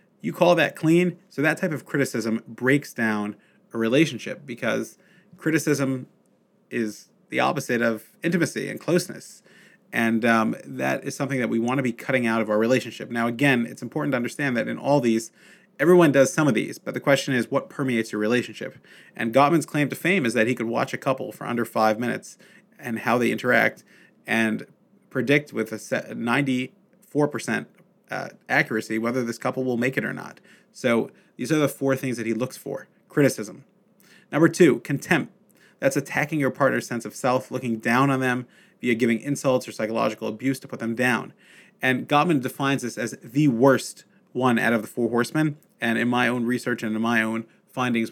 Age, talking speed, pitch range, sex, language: 30-49, 195 wpm, 115-155 Hz, male, English